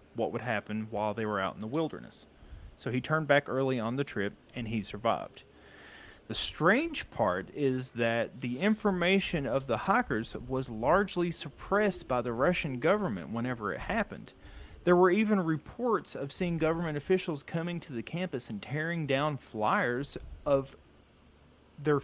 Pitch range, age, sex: 115-175 Hz, 30-49, male